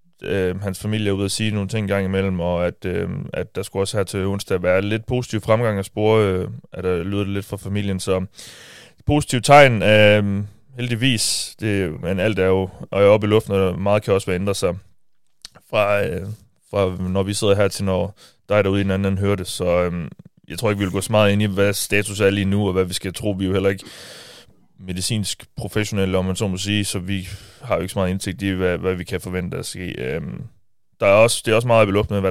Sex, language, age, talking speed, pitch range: male, Danish, 20-39, 245 wpm, 95-110 Hz